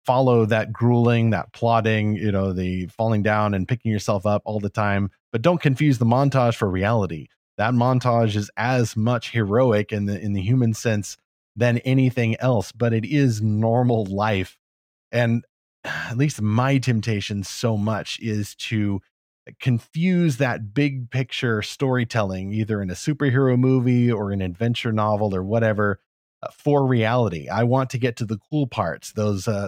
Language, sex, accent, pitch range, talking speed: English, male, American, 105-125 Hz, 165 wpm